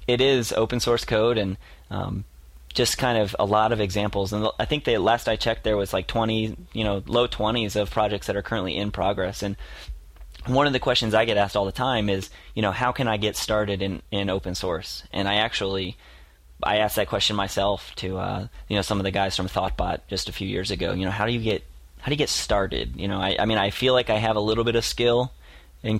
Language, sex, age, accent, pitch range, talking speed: English, male, 30-49, American, 95-110 Hz, 250 wpm